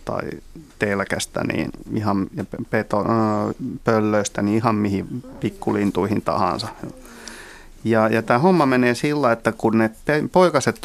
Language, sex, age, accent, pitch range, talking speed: Finnish, male, 30-49, native, 105-125 Hz, 110 wpm